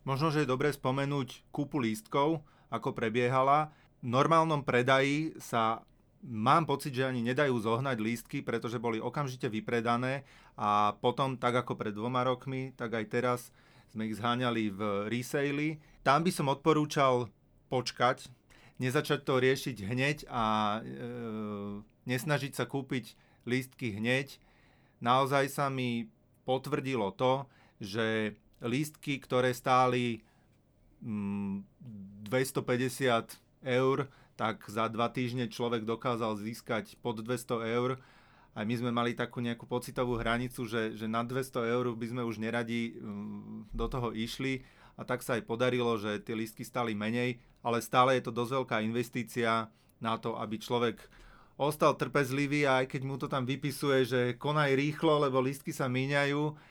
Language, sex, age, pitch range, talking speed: Slovak, male, 30-49, 115-135 Hz, 140 wpm